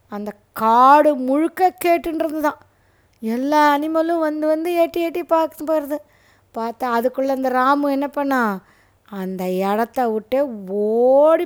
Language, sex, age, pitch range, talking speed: Tamil, female, 20-39, 220-285 Hz, 120 wpm